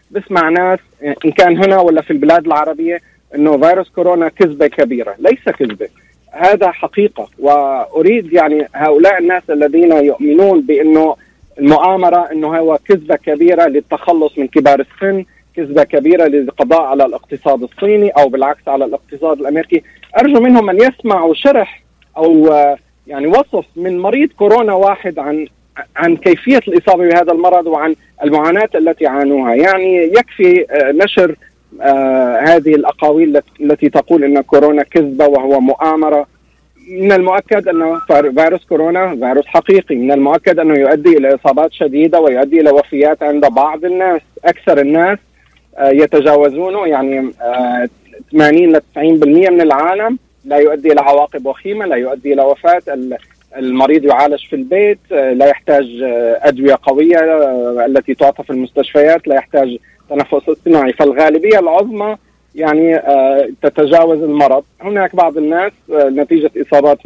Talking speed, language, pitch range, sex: 125 wpm, Arabic, 145-180 Hz, male